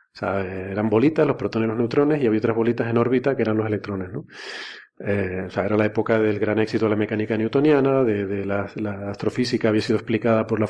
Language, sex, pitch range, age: Spanish, male, 110-130 Hz, 30-49